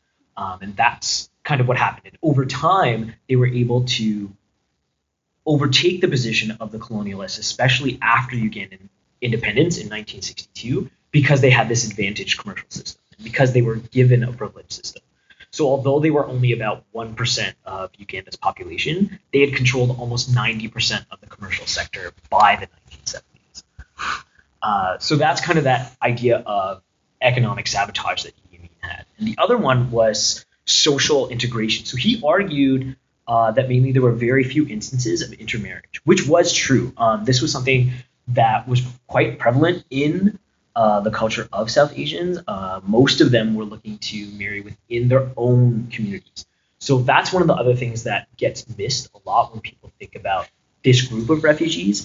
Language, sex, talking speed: English, male, 165 wpm